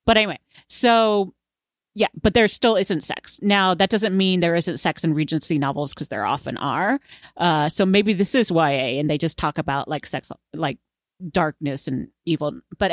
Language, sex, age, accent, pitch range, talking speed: English, female, 30-49, American, 155-190 Hz, 190 wpm